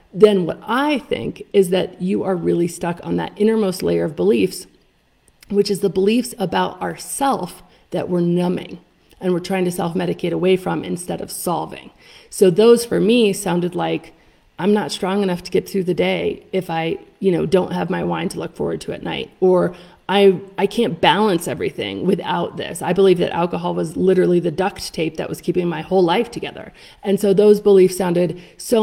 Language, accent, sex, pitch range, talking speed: English, American, female, 180-210 Hz, 195 wpm